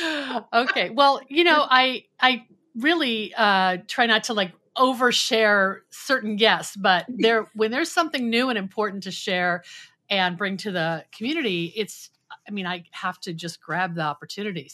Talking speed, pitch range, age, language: 165 wpm, 175-225 Hz, 50-69, English